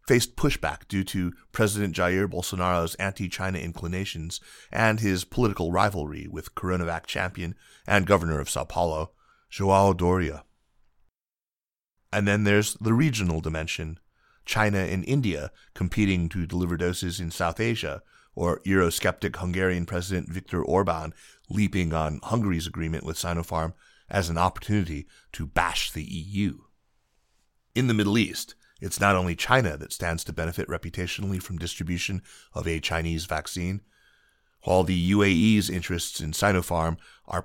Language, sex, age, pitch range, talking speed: English, male, 30-49, 85-100 Hz, 135 wpm